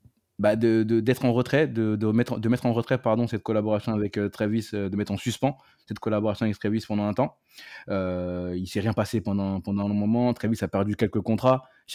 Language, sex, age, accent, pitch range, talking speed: French, male, 20-39, French, 95-110 Hz, 230 wpm